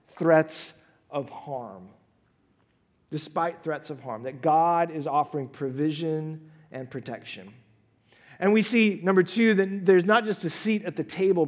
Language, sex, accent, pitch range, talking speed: English, male, American, 130-175 Hz, 145 wpm